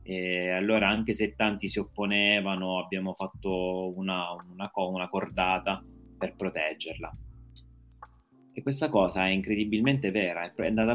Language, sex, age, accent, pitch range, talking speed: Italian, male, 30-49, native, 90-115 Hz, 125 wpm